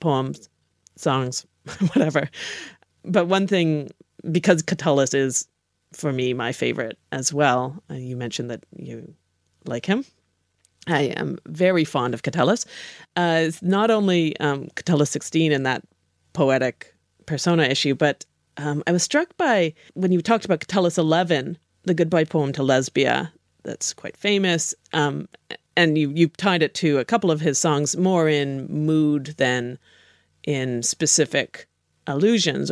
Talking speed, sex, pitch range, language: 145 wpm, female, 140-180 Hz, English